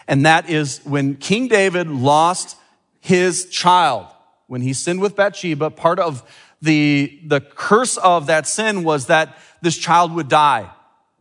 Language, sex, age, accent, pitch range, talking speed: English, male, 40-59, American, 150-195 Hz, 150 wpm